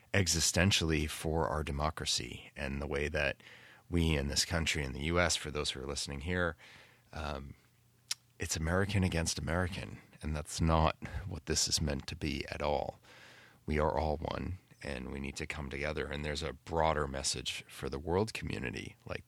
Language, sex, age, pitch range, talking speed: English, male, 30-49, 70-90 Hz, 175 wpm